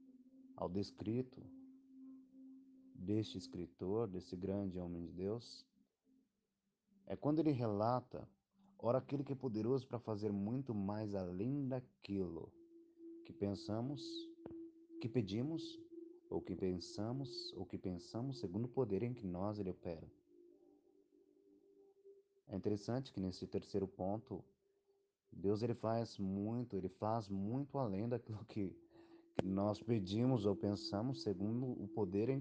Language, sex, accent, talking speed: Portuguese, male, Brazilian, 125 wpm